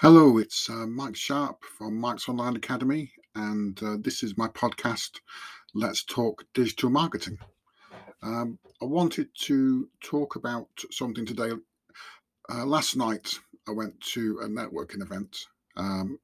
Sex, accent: male, British